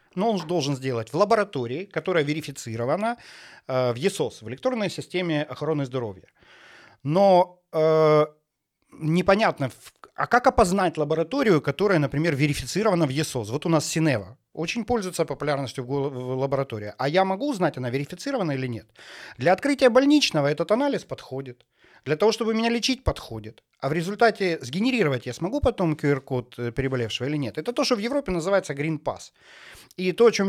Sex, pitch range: male, 140-200 Hz